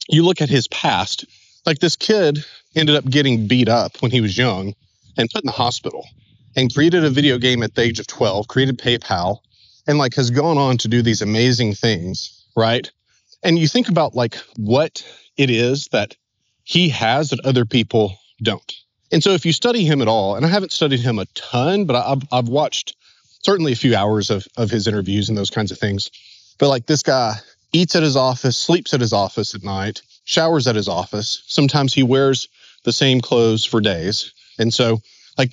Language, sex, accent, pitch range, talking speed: English, male, American, 110-145 Hz, 205 wpm